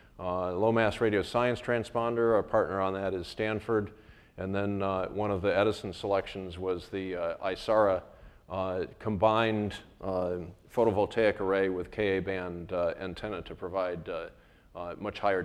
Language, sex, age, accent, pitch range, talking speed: English, male, 40-59, American, 100-120 Hz, 150 wpm